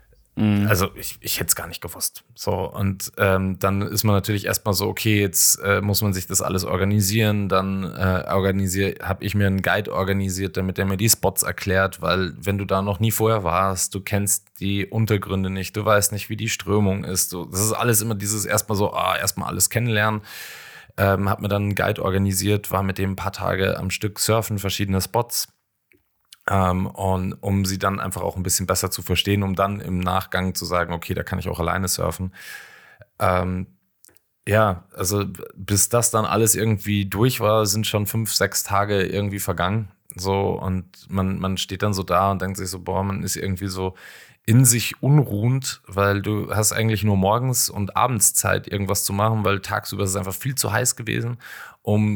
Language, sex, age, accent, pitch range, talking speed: German, male, 20-39, German, 95-105 Hz, 195 wpm